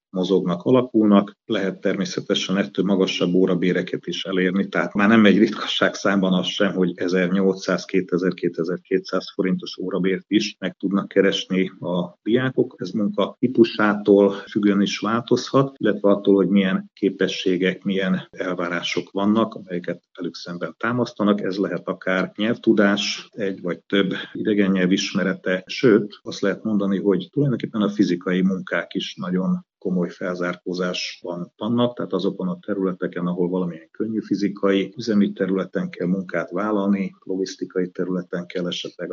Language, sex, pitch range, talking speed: Hungarian, male, 90-105 Hz, 130 wpm